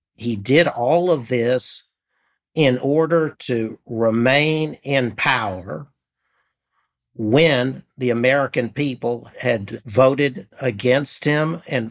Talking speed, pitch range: 100 wpm, 115-140 Hz